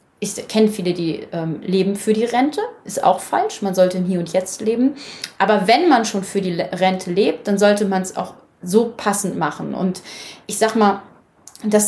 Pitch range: 190-220 Hz